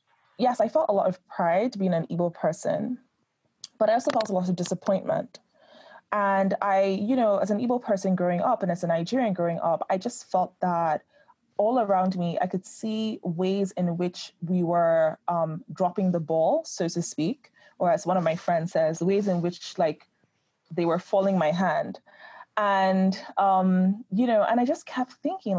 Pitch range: 170-210 Hz